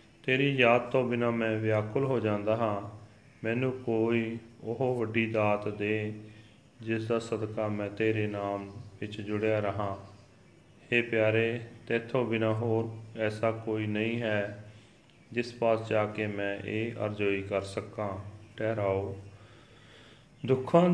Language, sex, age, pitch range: Punjabi, male, 40-59, 105-120 Hz